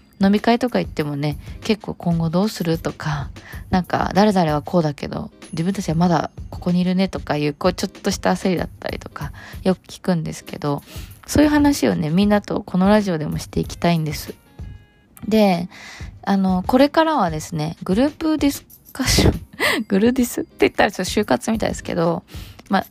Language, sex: Japanese, female